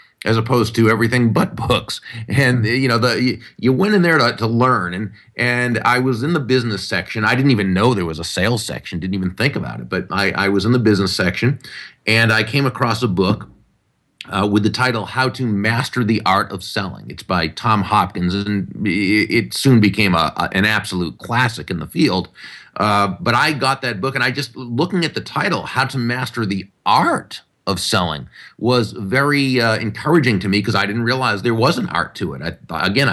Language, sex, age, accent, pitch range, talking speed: English, male, 30-49, American, 100-125 Hz, 210 wpm